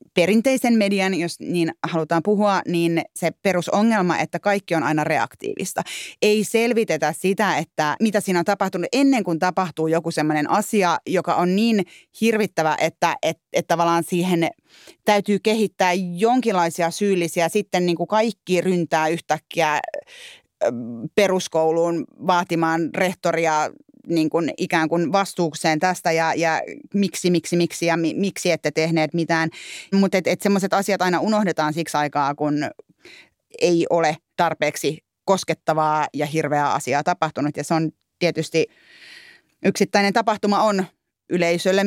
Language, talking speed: Finnish, 130 wpm